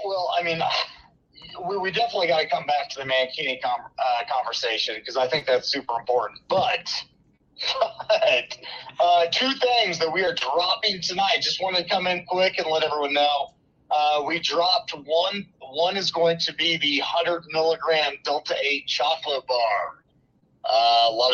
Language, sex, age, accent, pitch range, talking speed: English, male, 30-49, American, 130-180 Hz, 170 wpm